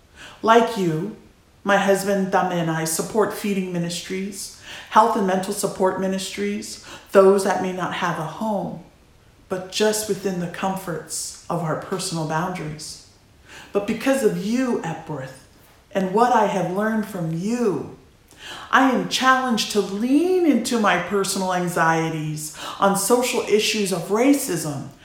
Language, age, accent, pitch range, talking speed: English, 50-69, American, 175-220 Hz, 135 wpm